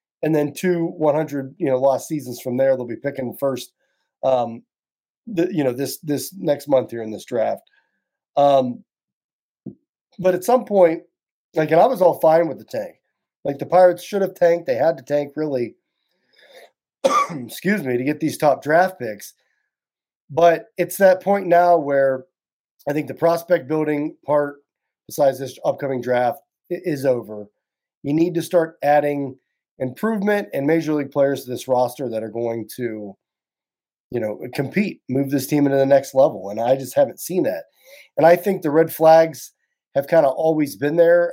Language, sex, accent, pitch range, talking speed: English, male, American, 130-170 Hz, 175 wpm